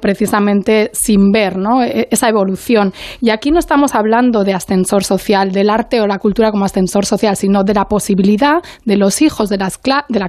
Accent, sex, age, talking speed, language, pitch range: Spanish, female, 20-39, 180 wpm, Spanish, 200-260 Hz